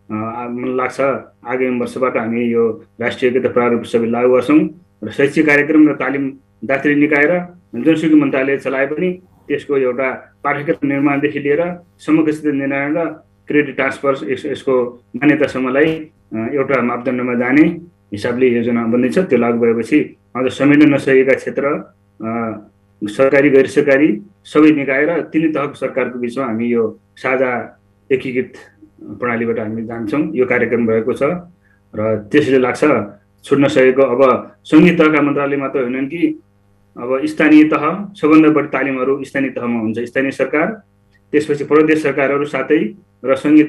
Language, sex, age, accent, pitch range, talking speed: English, male, 30-49, Indian, 115-145 Hz, 110 wpm